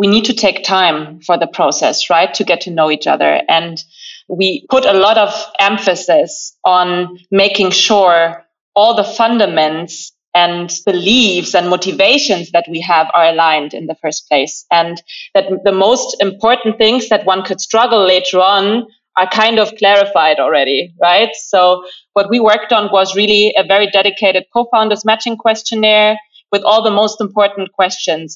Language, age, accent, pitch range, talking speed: English, 30-49, German, 185-225 Hz, 165 wpm